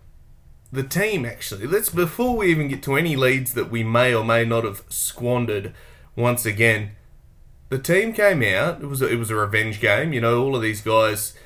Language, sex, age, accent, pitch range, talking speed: English, male, 20-39, Australian, 105-130 Hz, 205 wpm